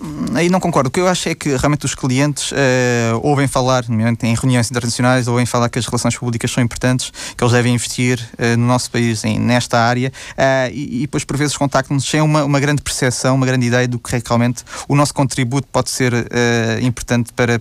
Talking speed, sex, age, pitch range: 200 wpm, male, 20-39, 120-140 Hz